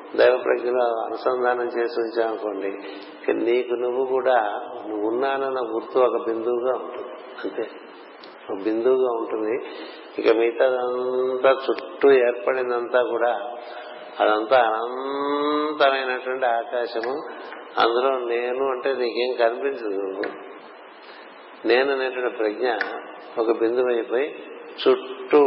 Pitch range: 115-130 Hz